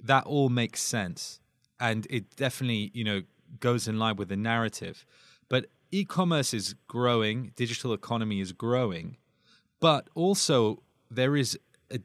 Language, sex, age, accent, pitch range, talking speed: English, male, 20-39, British, 105-130 Hz, 140 wpm